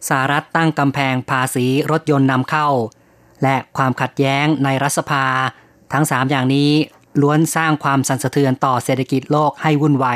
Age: 20-39